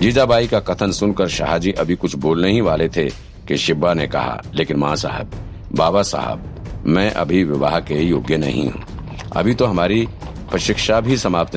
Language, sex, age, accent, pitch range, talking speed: Hindi, male, 50-69, native, 85-105 Hz, 170 wpm